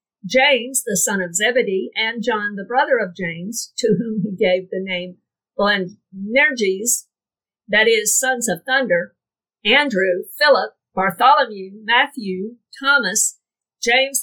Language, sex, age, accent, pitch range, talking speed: English, female, 50-69, American, 205-260 Hz, 120 wpm